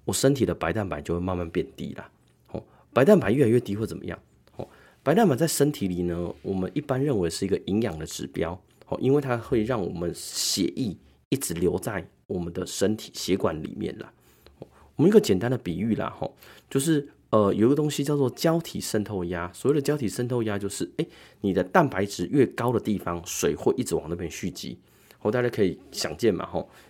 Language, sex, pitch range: Chinese, male, 90-125 Hz